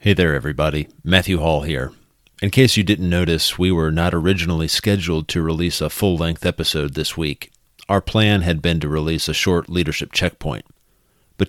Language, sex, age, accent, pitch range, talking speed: English, male, 40-59, American, 80-95 Hz, 180 wpm